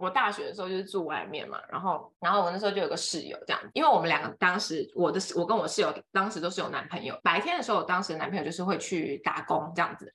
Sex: female